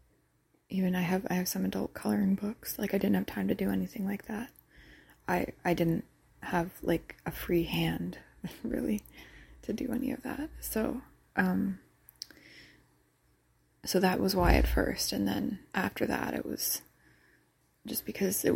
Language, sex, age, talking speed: English, female, 20-39, 160 wpm